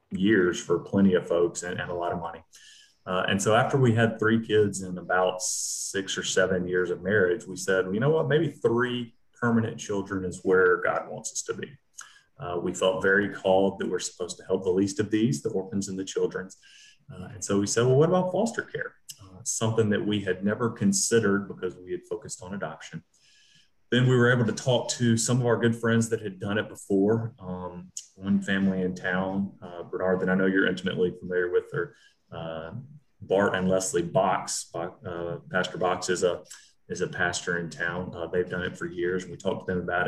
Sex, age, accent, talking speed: male, 30-49, American, 215 wpm